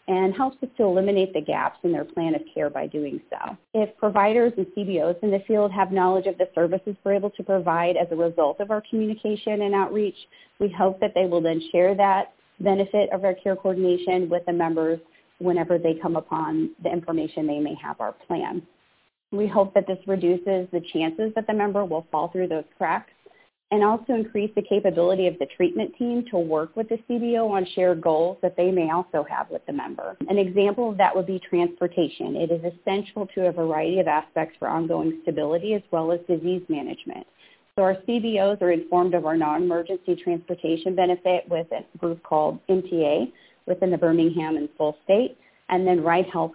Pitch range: 170-205 Hz